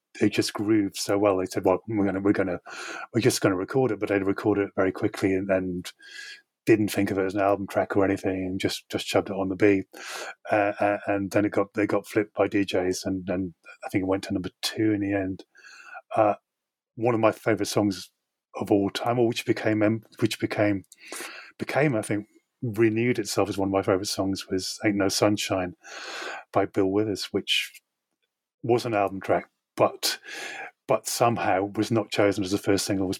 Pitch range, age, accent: 95-105 Hz, 30-49, British